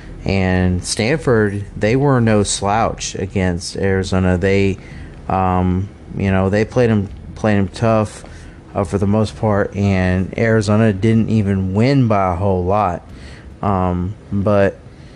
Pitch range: 95-115 Hz